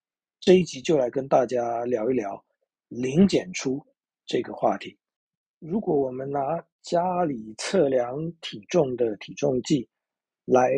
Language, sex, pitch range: Chinese, male, 125-170 Hz